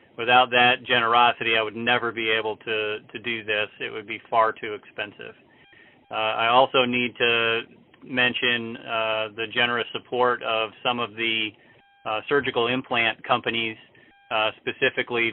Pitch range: 110-120 Hz